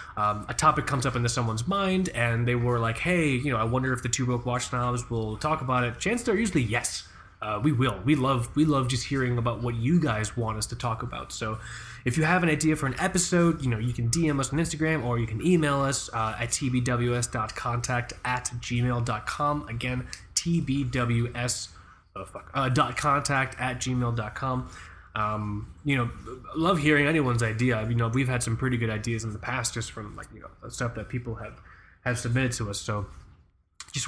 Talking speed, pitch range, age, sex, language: 200 wpm, 115-145 Hz, 20-39, male, English